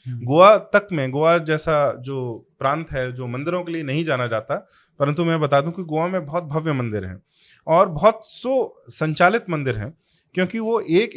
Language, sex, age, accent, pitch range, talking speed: Hindi, male, 30-49, native, 120-160 Hz, 190 wpm